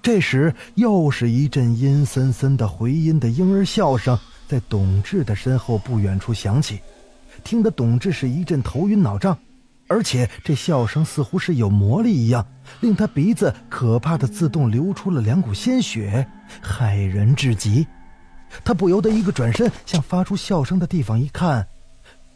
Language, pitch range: Chinese, 115-190 Hz